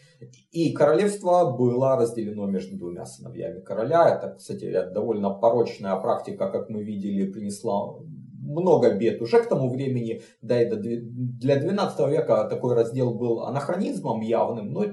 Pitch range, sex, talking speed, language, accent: 115-175 Hz, male, 135 wpm, Russian, native